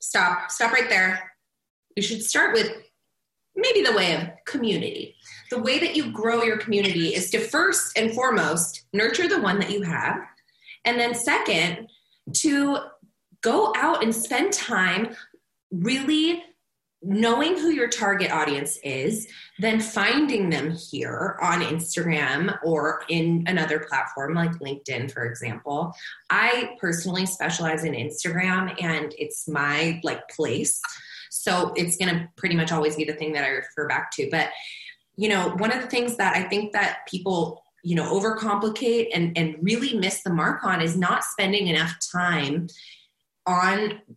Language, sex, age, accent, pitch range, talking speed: English, female, 20-39, American, 170-230 Hz, 155 wpm